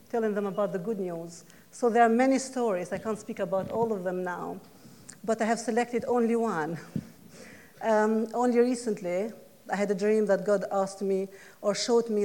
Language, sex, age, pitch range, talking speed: English, female, 50-69, 195-230 Hz, 190 wpm